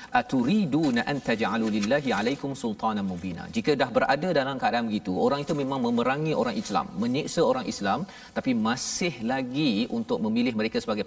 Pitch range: 175-250 Hz